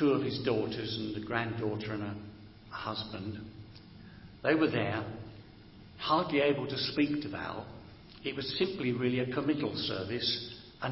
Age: 60-79